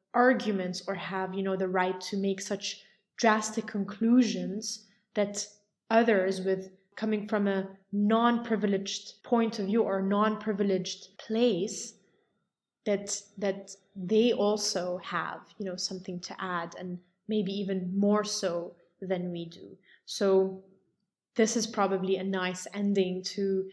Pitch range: 195-230 Hz